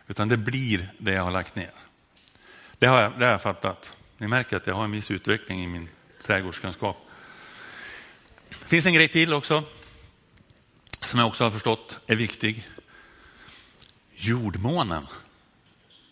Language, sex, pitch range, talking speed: Swedish, male, 100-140 Hz, 150 wpm